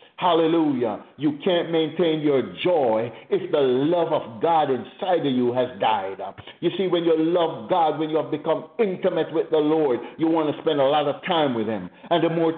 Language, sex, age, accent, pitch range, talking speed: English, male, 60-79, American, 140-170 Hz, 205 wpm